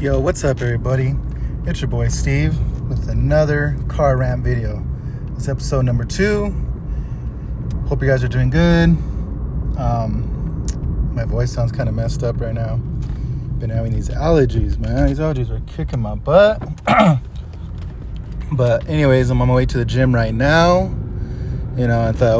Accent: American